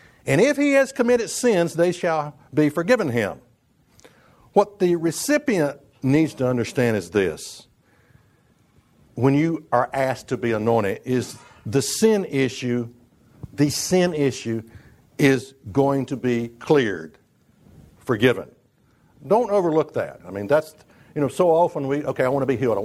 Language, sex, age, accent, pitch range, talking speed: English, male, 60-79, American, 125-170 Hz, 150 wpm